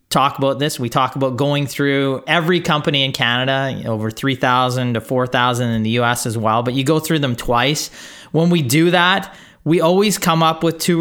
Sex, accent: male, American